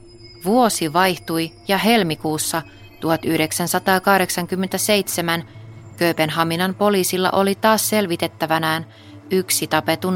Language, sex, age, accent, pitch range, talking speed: Finnish, female, 30-49, native, 115-185 Hz, 70 wpm